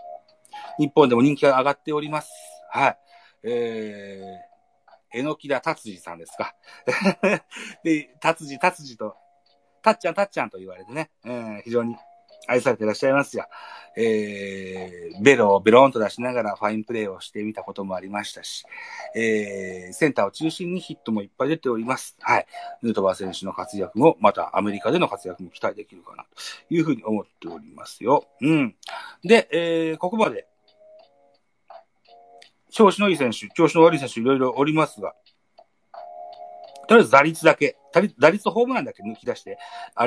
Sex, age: male, 40-59